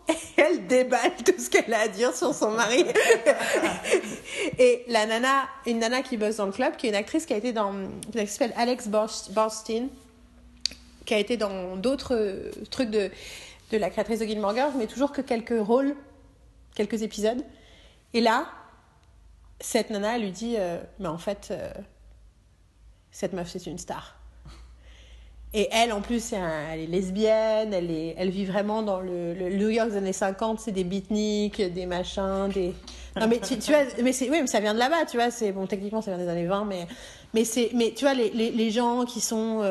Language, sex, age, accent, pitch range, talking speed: French, female, 30-49, French, 200-255 Hz, 195 wpm